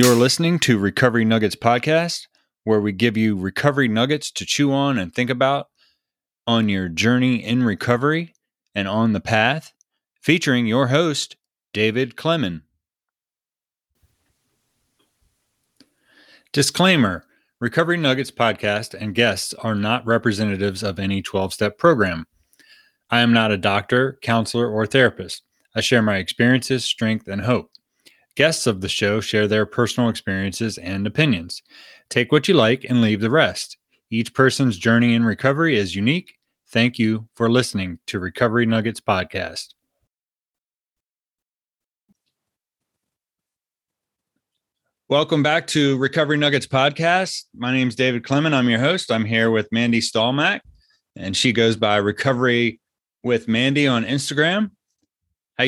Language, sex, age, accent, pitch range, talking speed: English, male, 30-49, American, 105-135 Hz, 130 wpm